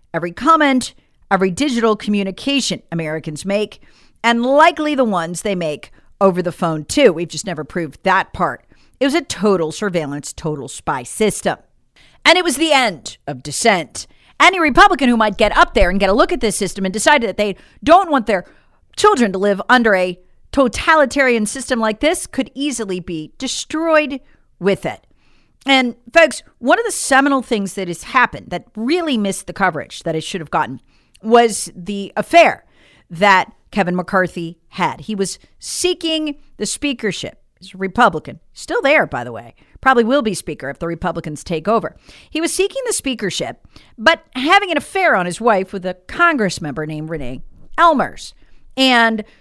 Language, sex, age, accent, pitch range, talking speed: English, female, 40-59, American, 180-280 Hz, 175 wpm